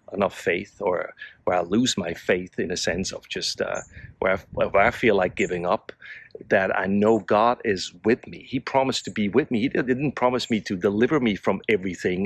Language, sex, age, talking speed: English, male, 40-59, 215 wpm